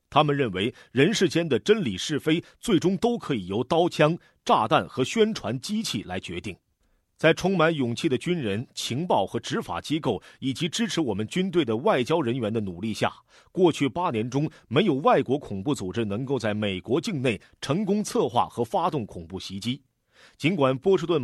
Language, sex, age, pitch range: Chinese, male, 30-49, 115-175 Hz